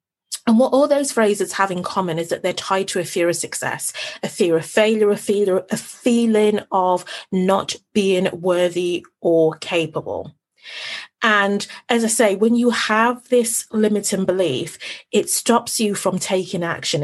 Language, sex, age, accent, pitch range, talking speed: English, female, 30-49, British, 185-235 Hz, 170 wpm